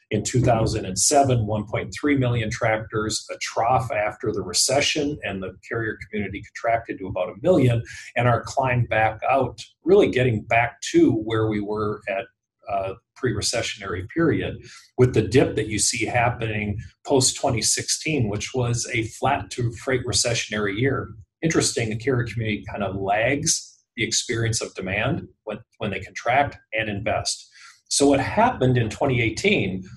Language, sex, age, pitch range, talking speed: English, male, 40-59, 105-135 Hz, 145 wpm